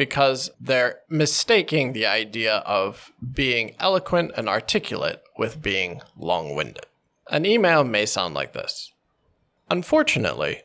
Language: Chinese